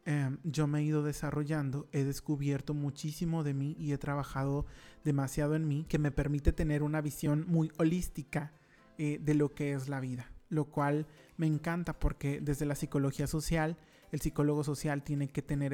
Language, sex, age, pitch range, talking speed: Spanish, male, 30-49, 140-155 Hz, 175 wpm